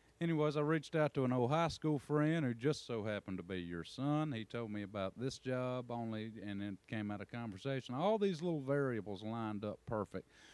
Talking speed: 215 wpm